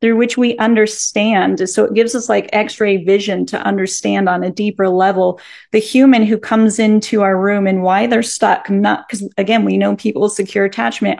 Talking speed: 200 wpm